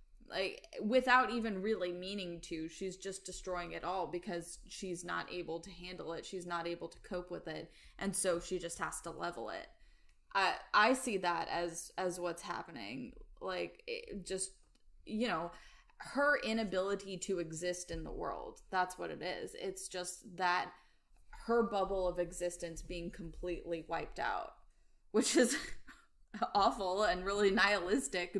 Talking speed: 155 wpm